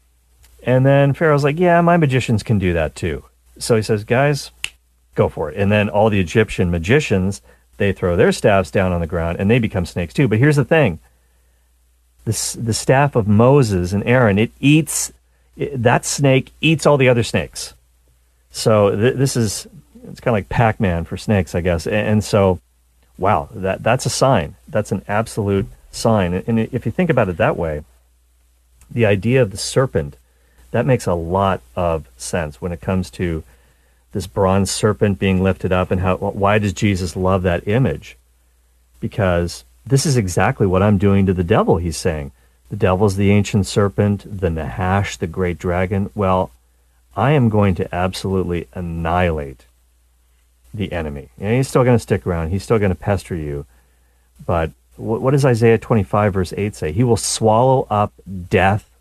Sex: male